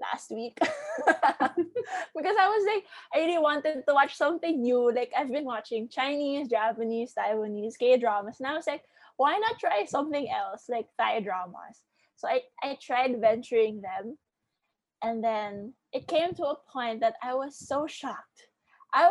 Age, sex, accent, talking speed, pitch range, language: 20-39, female, Filipino, 165 wpm, 235-330 Hz, English